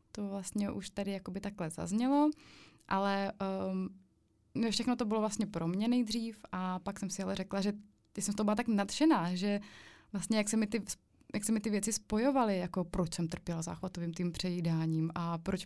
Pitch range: 180-215 Hz